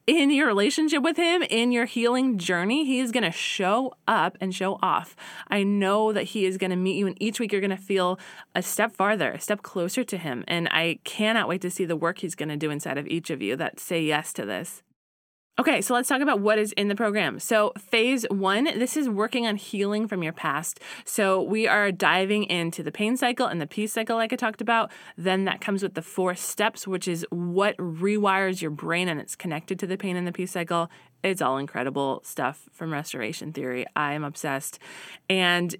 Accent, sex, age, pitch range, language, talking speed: American, female, 20-39, 180-225 Hz, English, 225 wpm